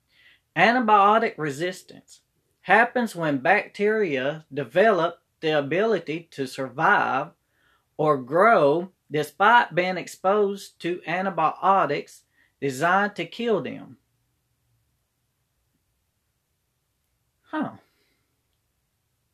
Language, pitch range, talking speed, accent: English, 135-195 Hz, 70 wpm, American